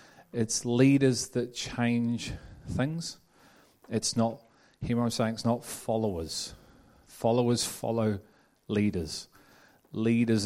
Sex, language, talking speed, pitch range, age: male, English, 105 wpm, 105-115 Hz, 30-49